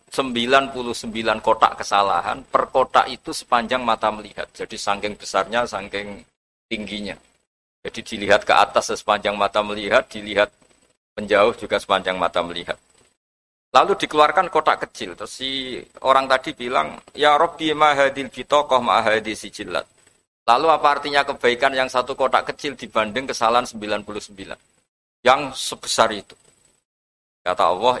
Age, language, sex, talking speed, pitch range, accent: 50-69, Indonesian, male, 125 wpm, 100-125 Hz, native